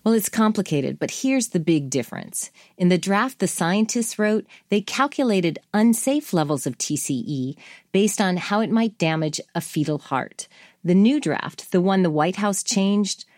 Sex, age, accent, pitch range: female, 40-59, American, 170-225 Hz